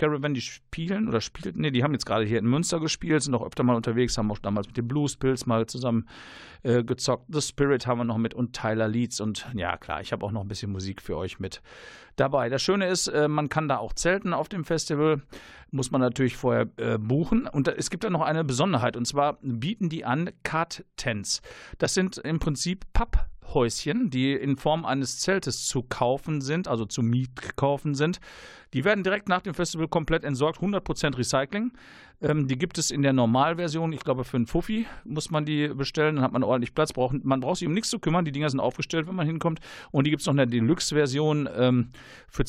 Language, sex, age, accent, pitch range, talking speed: German, male, 50-69, German, 120-155 Hz, 220 wpm